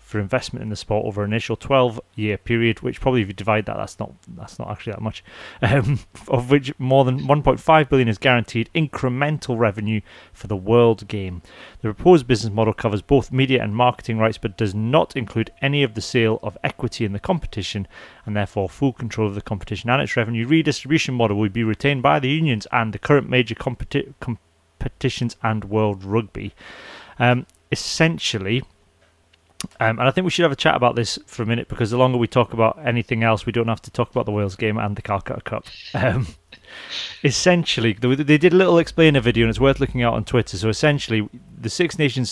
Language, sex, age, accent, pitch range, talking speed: English, male, 30-49, British, 110-130 Hz, 205 wpm